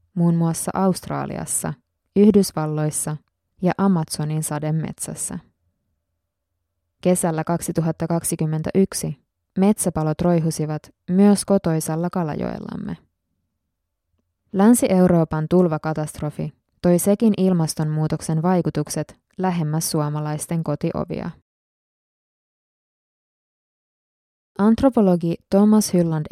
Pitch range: 150-185 Hz